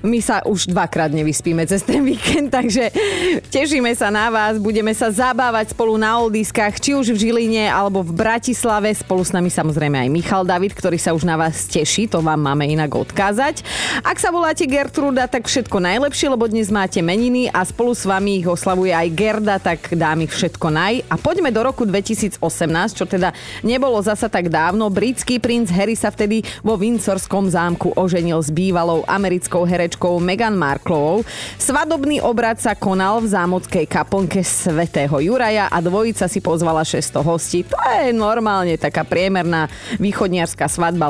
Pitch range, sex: 175-235 Hz, female